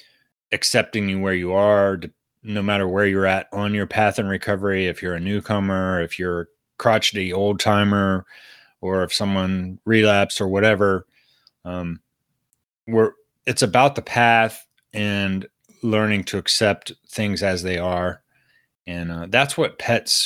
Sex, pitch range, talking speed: male, 95-120 Hz, 150 wpm